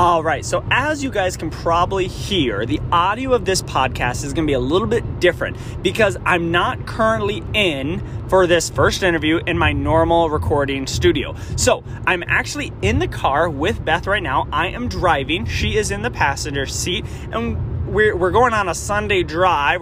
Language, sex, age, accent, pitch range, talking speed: English, male, 20-39, American, 150-190 Hz, 185 wpm